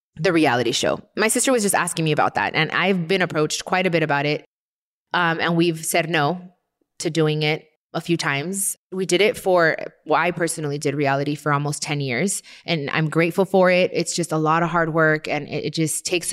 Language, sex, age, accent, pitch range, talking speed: English, female, 20-39, American, 155-195 Hz, 220 wpm